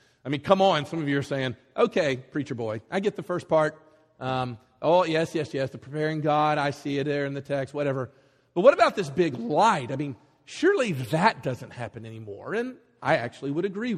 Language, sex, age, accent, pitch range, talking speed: English, male, 40-59, American, 135-220 Hz, 220 wpm